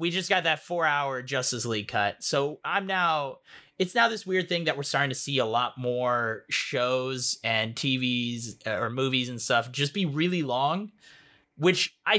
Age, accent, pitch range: 30-49, American, 120-160 Hz